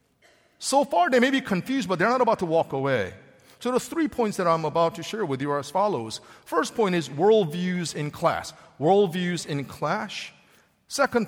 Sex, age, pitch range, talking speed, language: male, 50-69, 145-210 Hz, 195 wpm, English